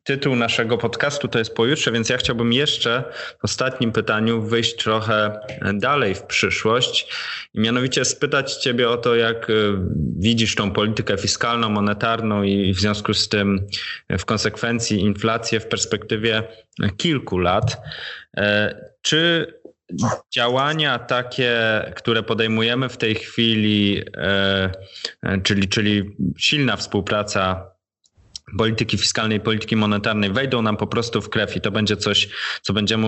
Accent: native